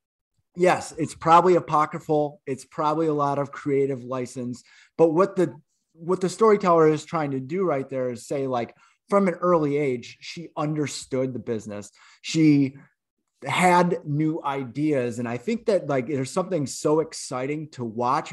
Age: 20-39